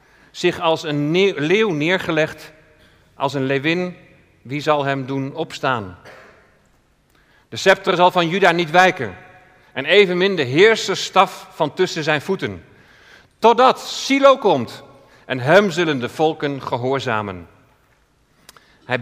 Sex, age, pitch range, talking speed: male, 40-59, 130-170 Hz, 120 wpm